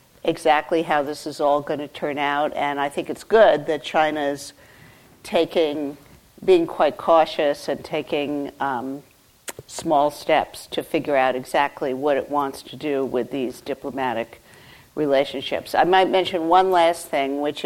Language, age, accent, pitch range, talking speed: English, 50-69, American, 140-165 Hz, 155 wpm